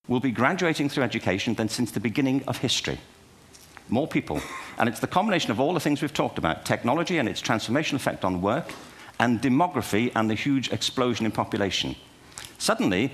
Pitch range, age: 100-140 Hz, 50-69